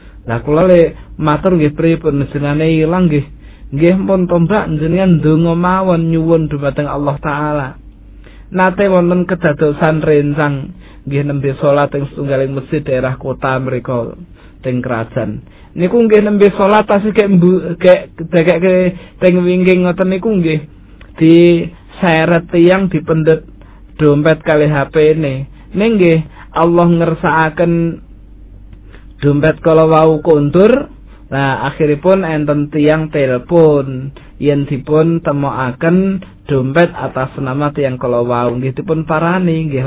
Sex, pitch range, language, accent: male, 135-175 Hz, Indonesian, native